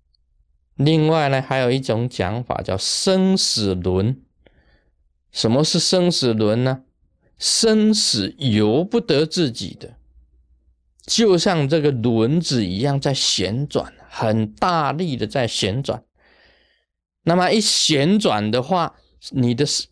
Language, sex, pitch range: Chinese, male, 95-160 Hz